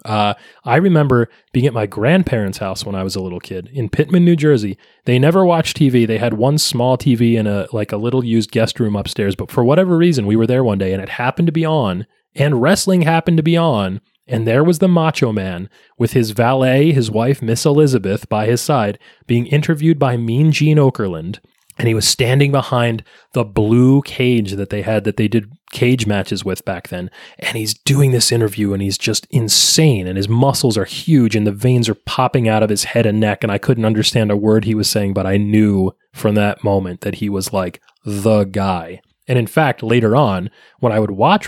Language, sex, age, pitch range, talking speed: English, male, 20-39, 105-140 Hz, 220 wpm